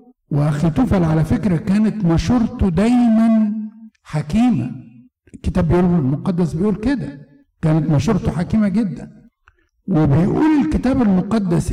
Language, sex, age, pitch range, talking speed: Arabic, male, 60-79, 155-220 Hz, 100 wpm